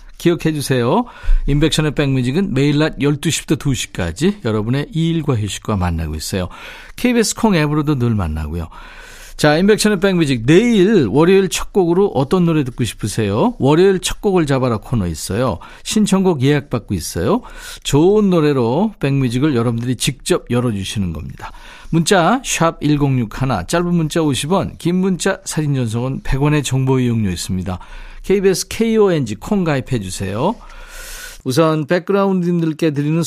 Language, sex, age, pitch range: Korean, male, 50-69, 125-175 Hz